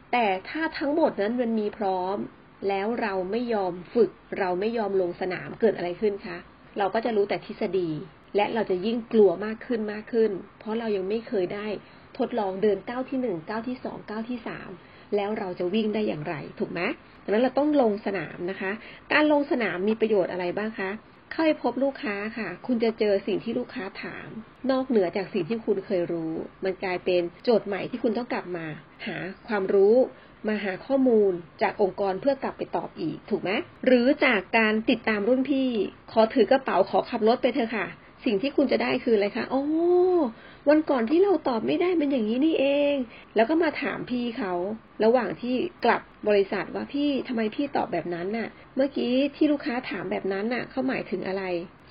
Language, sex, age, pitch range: Thai, female, 30-49, 195-250 Hz